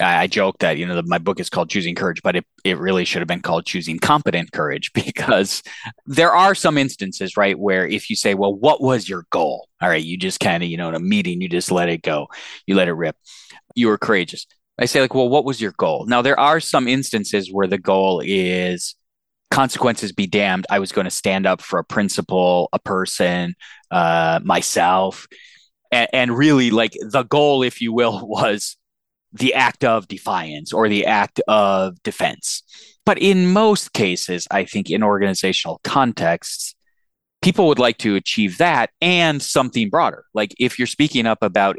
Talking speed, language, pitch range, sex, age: 195 wpm, English, 95-135 Hz, male, 30-49